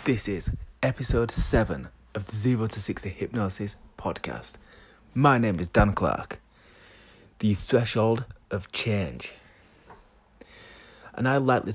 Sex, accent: male, British